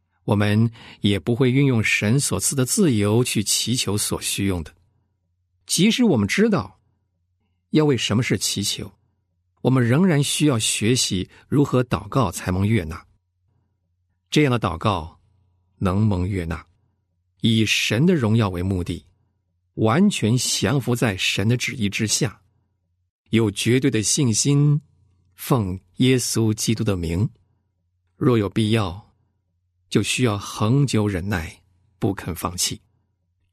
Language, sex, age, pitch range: Chinese, male, 50-69, 95-120 Hz